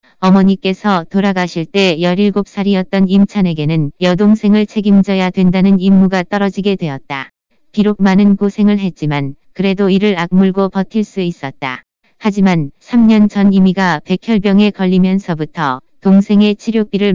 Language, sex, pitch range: Korean, female, 180-205 Hz